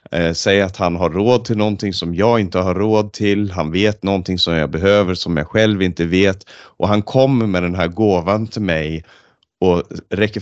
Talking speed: 200 wpm